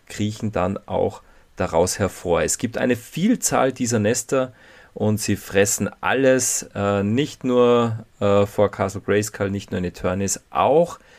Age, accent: 40-59, German